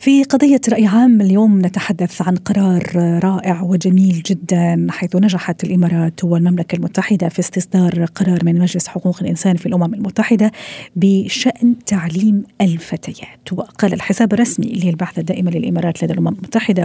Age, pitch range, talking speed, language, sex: 40-59, 170-195 Hz, 135 wpm, Arabic, female